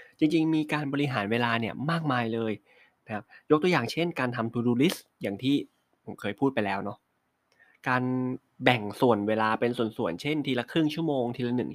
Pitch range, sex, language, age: 115-140 Hz, male, Thai, 20-39